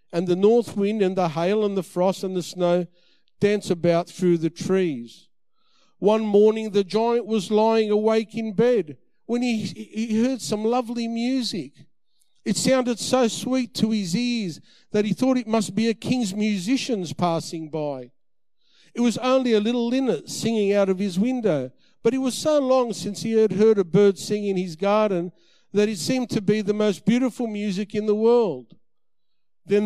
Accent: Australian